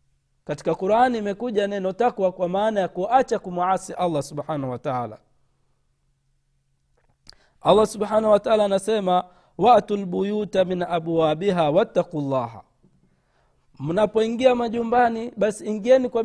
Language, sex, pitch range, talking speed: Swahili, male, 145-210 Hz, 105 wpm